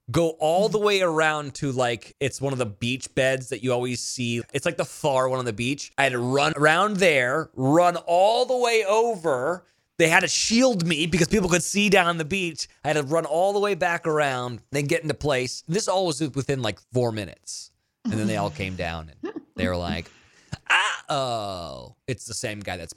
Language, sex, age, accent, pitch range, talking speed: English, male, 30-49, American, 115-175 Hz, 220 wpm